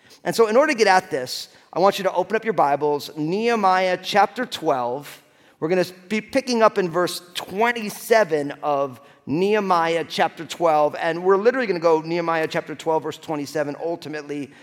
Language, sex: English, male